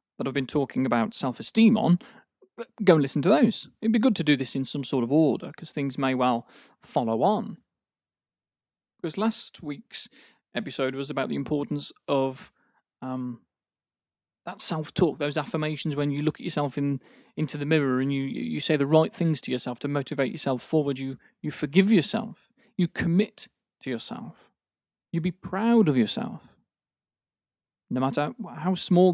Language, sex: English, male